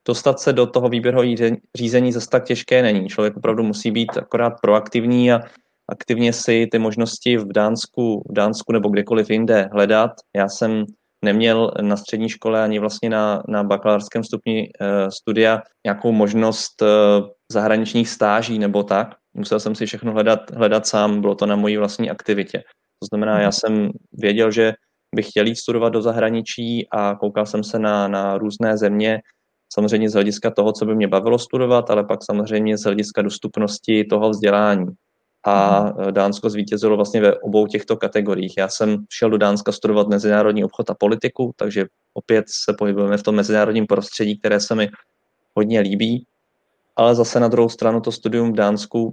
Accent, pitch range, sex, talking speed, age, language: native, 105-115 Hz, male, 170 wpm, 20-39, Czech